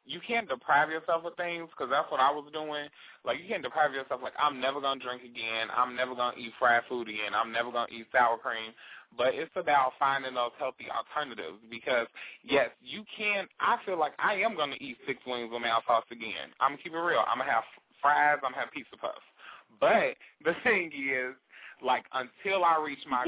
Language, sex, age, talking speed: English, male, 20-39, 230 wpm